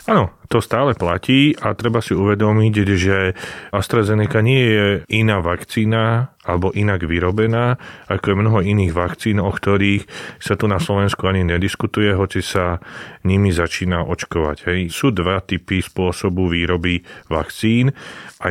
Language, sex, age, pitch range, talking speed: Slovak, male, 30-49, 85-100 Hz, 140 wpm